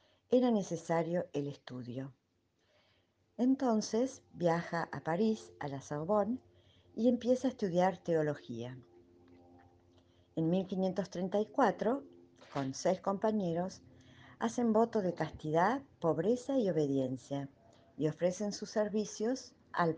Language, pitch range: Spanish, 140-205 Hz